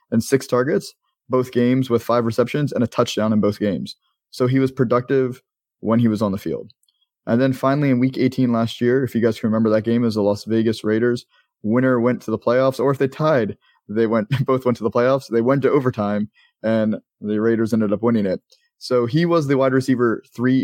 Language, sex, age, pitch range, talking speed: English, male, 20-39, 115-130 Hz, 225 wpm